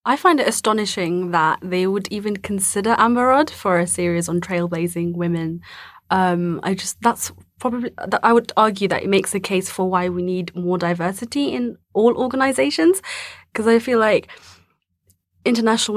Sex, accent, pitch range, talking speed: female, British, 180-210 Hz, 160 wpm